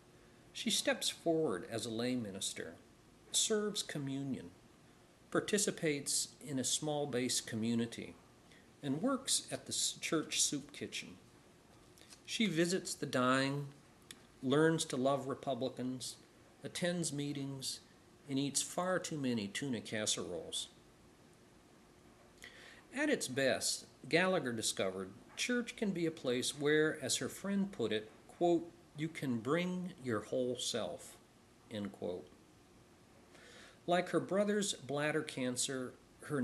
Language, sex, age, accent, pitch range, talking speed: English, male, 50-69, American, 120-165 Hz, 110 wpm